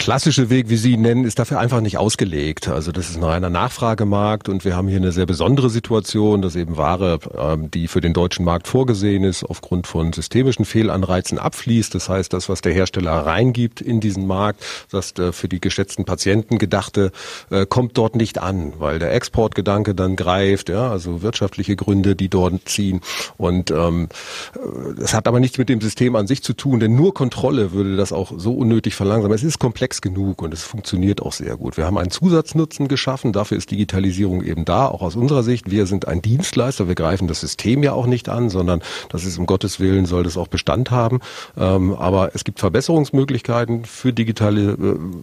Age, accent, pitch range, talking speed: 40-59, German, 90-115 Hz, 200 wpm